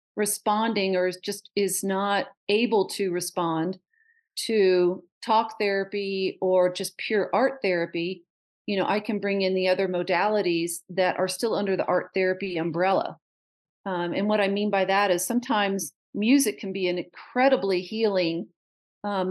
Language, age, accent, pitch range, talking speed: English, 40-59, American, 180-205 Hz, 150 wpm